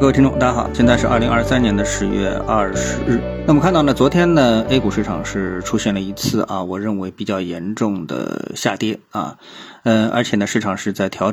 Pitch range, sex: 100-120 Hz, male